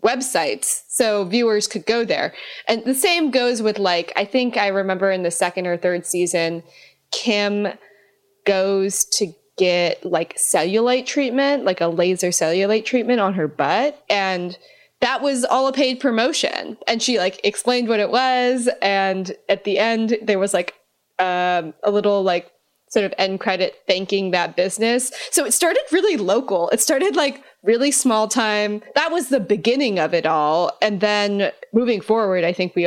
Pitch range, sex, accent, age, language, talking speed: 170-230 Hz, female, American, 20-39, English, 170 wpm